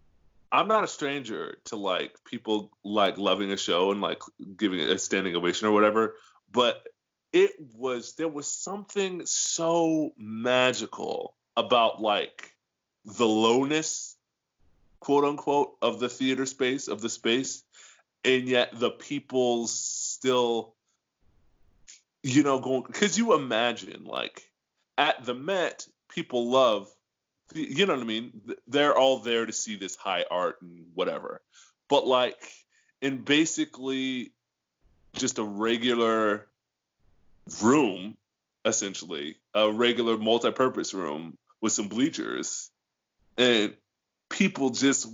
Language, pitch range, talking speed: English, 110-145 Hz, 120 wpm